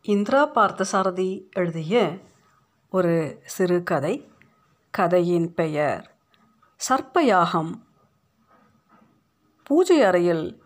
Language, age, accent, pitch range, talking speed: Tamil, 50-69, native, 180-250 Hz, 55 wpm